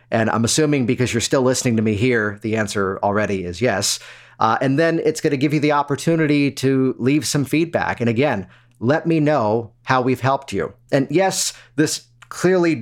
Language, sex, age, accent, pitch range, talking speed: English, male, 40-59, American, 115-150 Hz, 195 wpm